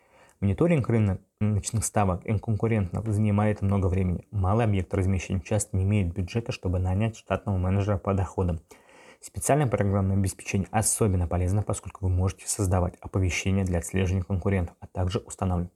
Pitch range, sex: 95-115 Hz, male